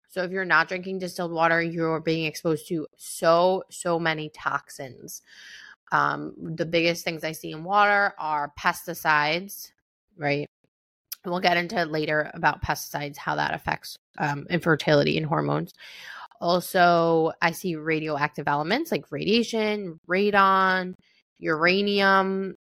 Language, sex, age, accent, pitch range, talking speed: English, female, 20-39, American, 155-185 Hz, 130 wpm